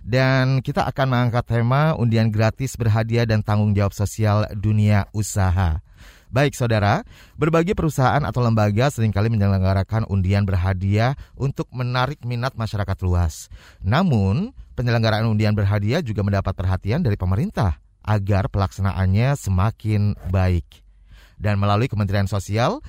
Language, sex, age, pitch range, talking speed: Indonesian, male, 30-49, 100-125 Hz, 120 wpm